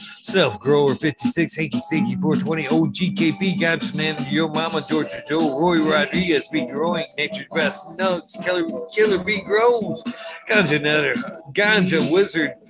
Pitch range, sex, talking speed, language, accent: 165-215 Hz, male, 135 wpm, English, American